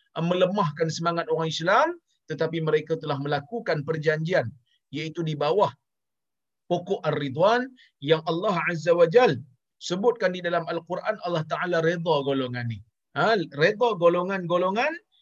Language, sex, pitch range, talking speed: Malayalam, male, 165-220 Hz, 120 wpm